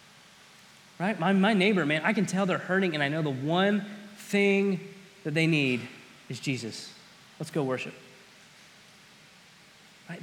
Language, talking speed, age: English, 145 wpm, 30-49